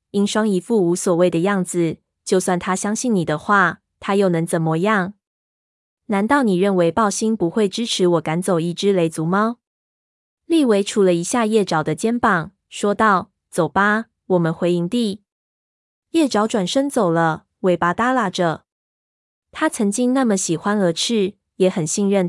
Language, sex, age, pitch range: Chinese, female, 20-39, 175-220 Hz